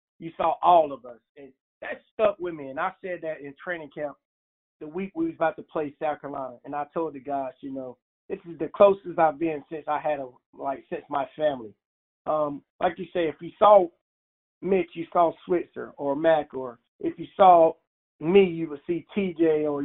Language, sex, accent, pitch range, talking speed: English, male, American, 145-175 Hz, 210 wpm